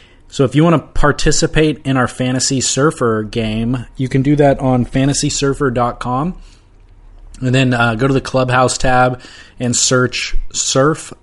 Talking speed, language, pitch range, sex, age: 150 wpm, English, 110-130 Hz, male, 20-39